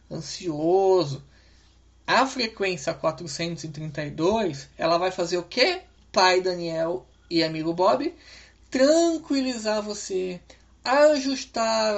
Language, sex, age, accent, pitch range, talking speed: Portuguese, male, 20-39, Brazilian, 175-255 Hz, 85 wpm